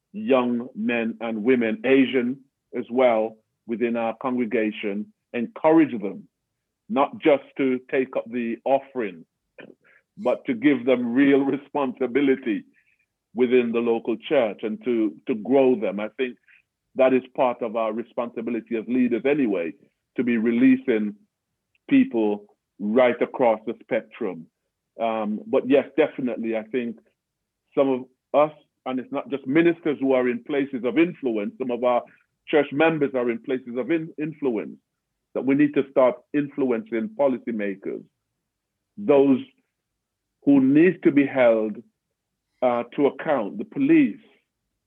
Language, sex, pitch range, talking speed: English, male, 115-140 Hz, 135 wpm